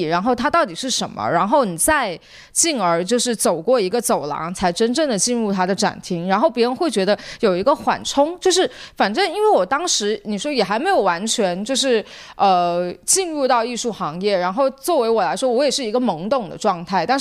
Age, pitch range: 20-39, 190-260 Hz